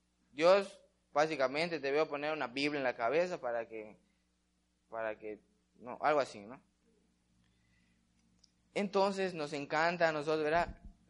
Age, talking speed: 20-39, 130 wpm